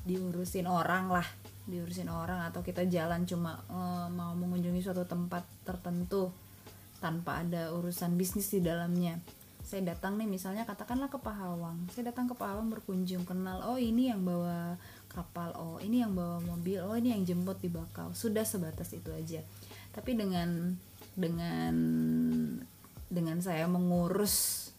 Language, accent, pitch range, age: Indonesian, native, 170-220 Hz, 20-39